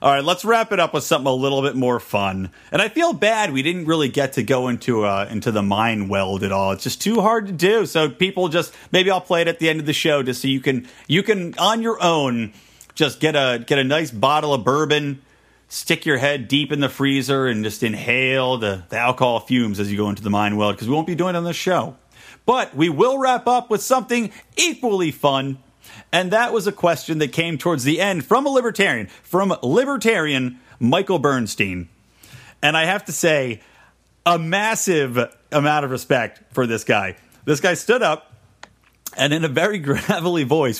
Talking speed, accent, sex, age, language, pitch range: 215 wpm, American, male, 30-49, English, 125-175 Hz